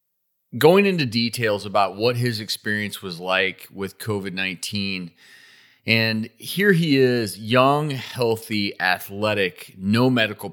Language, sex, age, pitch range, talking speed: English, male, 30-49, 100-130 Hz, 115 wpm